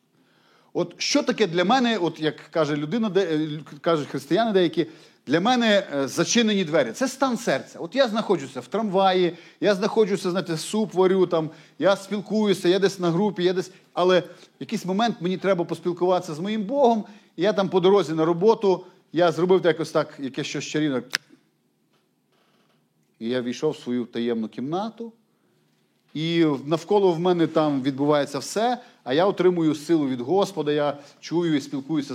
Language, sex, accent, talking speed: Ukrainian, male, native, 160 wpm